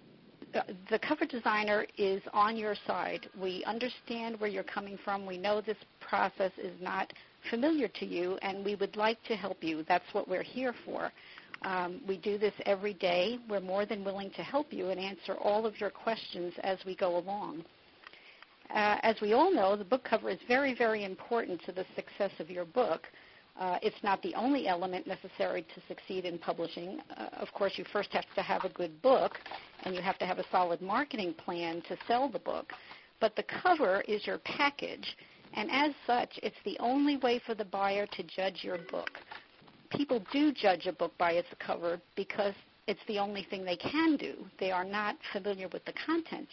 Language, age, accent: English, 60-79, American